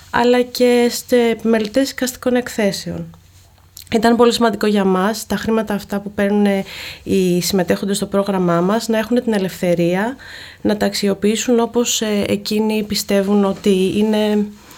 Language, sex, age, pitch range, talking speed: Greek, female, 20-39, 180-230 Hz, 135 wpm